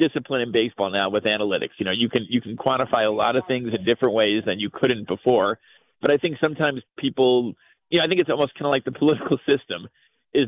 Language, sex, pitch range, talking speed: English, male, 110-135 Hz, 240 wpm